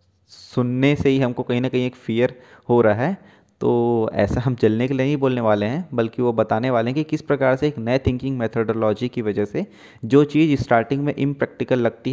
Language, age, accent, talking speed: Hindi, 20-39, native, 225 wpm